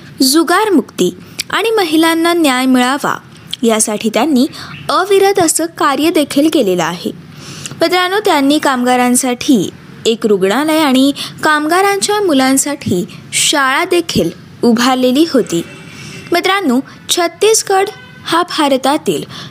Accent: native